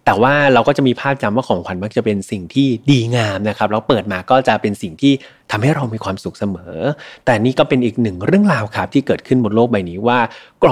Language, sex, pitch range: Thai, male, 105-135 Hz